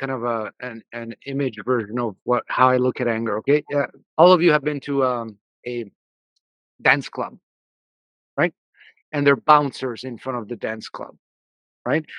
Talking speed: 185 wpm